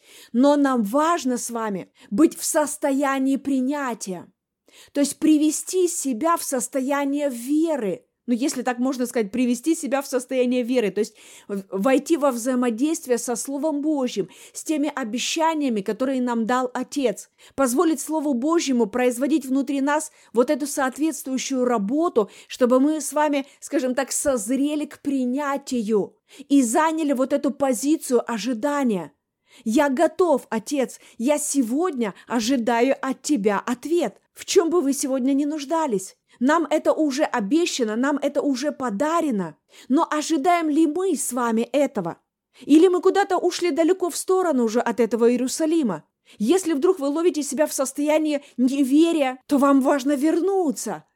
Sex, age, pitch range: female, 30-49, 250-310 Hz